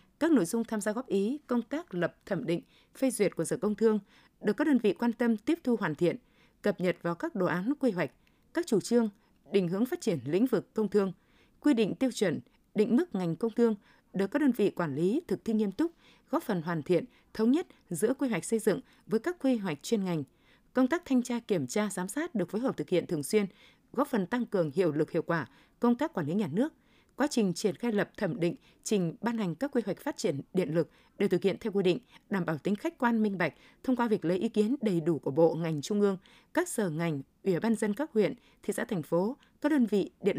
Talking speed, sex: 255 wpm, female